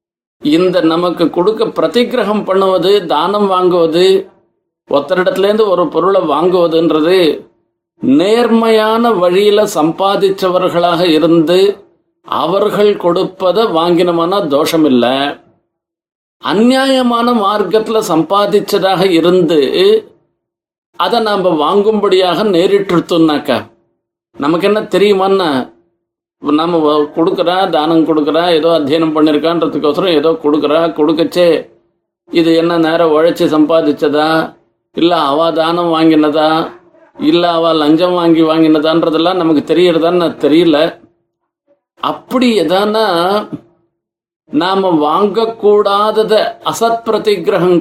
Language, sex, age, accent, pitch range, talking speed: Tamil, male, 50-69, native, 160-205 Hz, 80 wpm